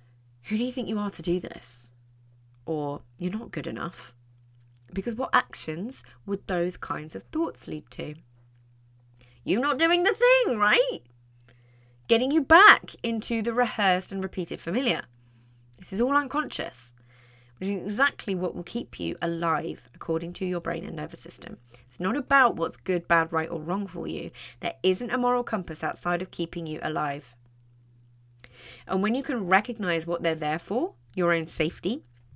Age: 20-39